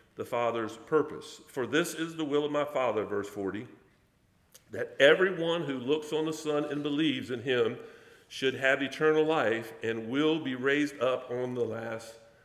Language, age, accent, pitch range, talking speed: English, 50-69, American, 130-160 Hz, 175 wpm